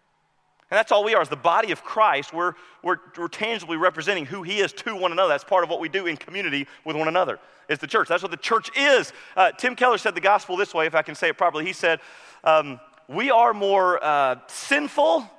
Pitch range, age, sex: 180-250 Hz, 30-49, male